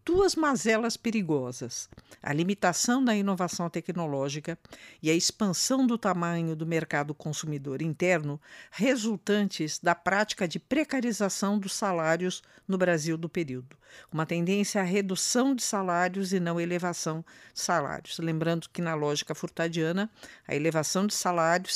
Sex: female